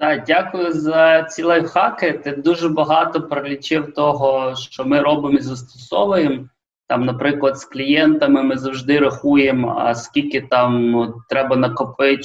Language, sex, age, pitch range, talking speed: Ukrainian, male, 20-39, 125-155 Hz, 125 wpm